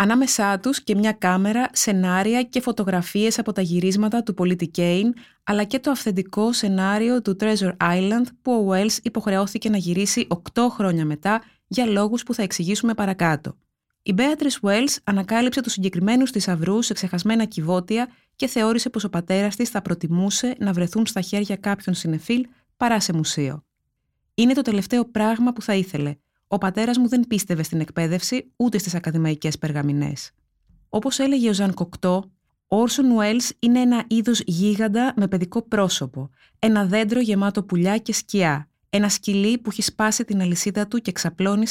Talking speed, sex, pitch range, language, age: 165 wpm, female, 180-230 Hz, Greek, 20-39